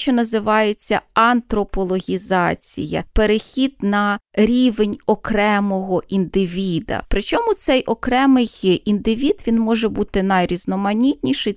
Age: 30-49